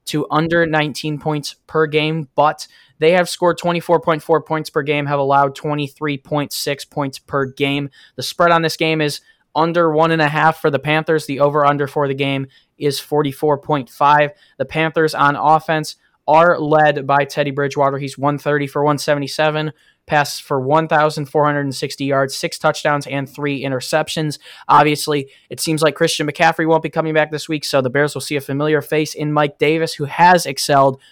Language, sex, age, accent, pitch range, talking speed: English, male, 10-29, American, 140-155 Hz, 165 wpm